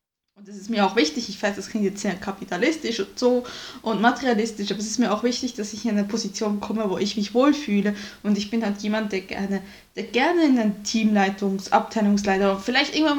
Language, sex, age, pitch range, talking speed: German, female, 20-39, 200-235 Hz, 215 wpm